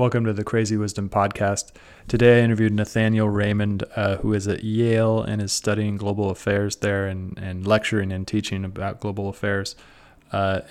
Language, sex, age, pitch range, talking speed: English, male, 20-39, 100-110 Hz, 175 wpm